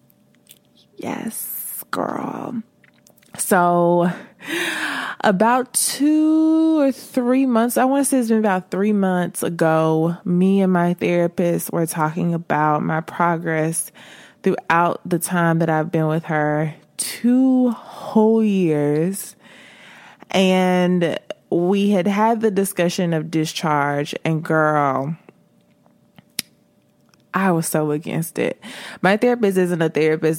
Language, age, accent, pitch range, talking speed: English, 20-39, American, 160-200 Hz, 115 wpm